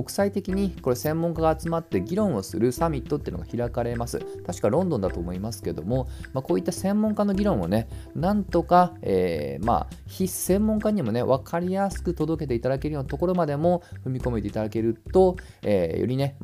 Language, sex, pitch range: Japanese, male, 105-170 Hz